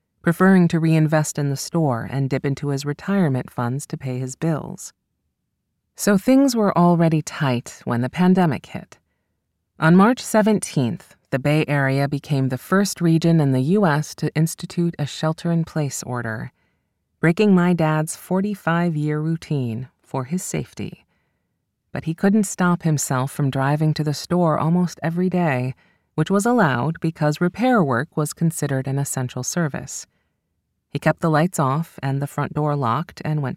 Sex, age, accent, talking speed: female, 30-49, American, 155 wpm